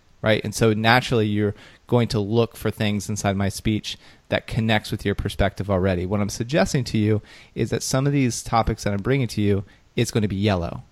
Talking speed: 220 wpm